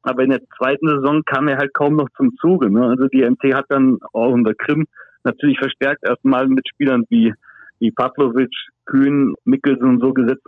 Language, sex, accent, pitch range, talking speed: German, male, German, 130-160 Hz, 190 wpm